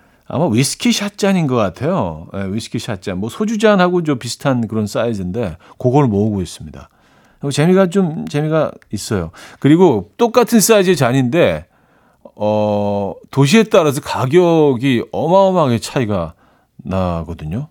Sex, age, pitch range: male, 40-59, 90-145 Hz